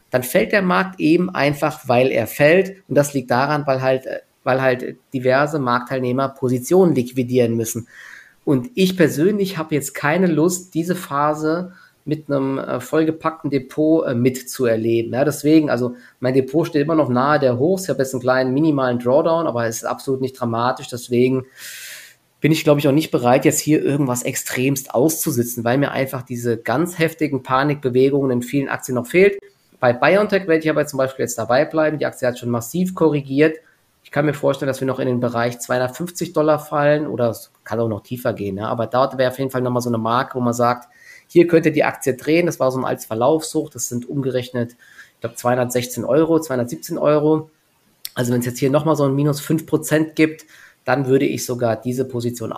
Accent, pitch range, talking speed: German, 125-155 Hz, 195 wpm